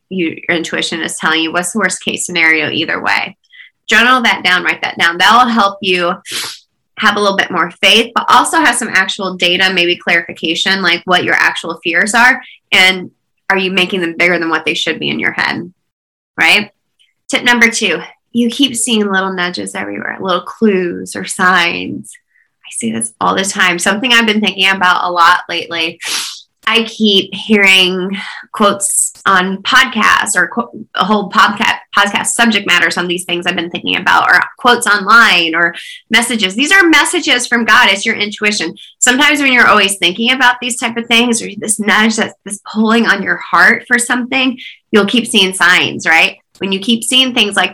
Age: 20-39